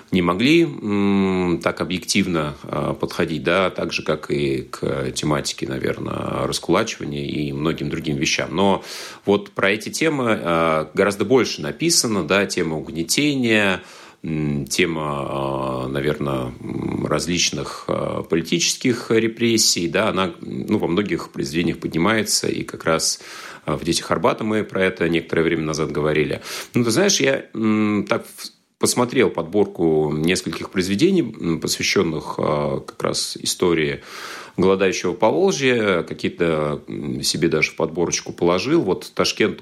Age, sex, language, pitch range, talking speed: 30-49, male, Russian, 80-105 Hz, 120 wpm